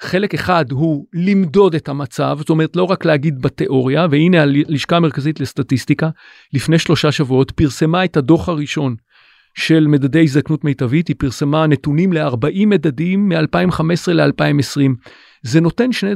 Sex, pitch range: male, 145-185 Hz